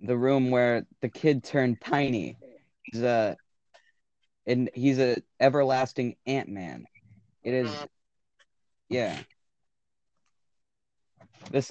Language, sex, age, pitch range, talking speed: English, male, 20-39, 100-130 Hz, 90 wpm